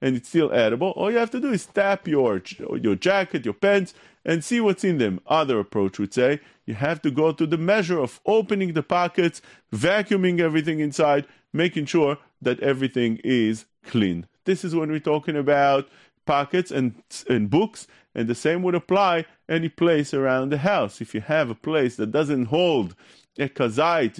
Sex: male